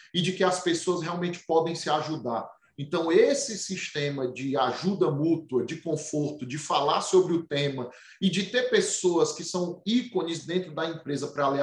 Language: Portuguese